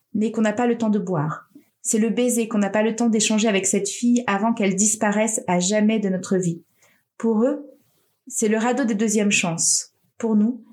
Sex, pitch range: female, 205-240 Hz